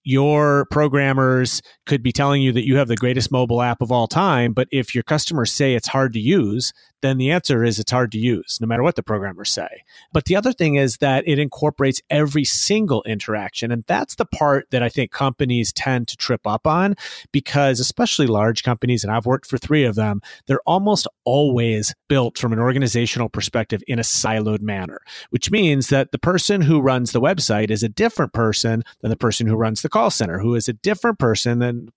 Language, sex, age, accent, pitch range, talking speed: English, male, 30-49, American, 120-150 Hz, 215 wpm